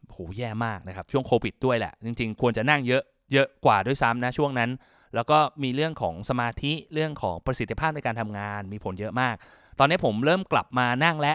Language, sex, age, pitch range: Thai, male, 20-39, 115-150 Hz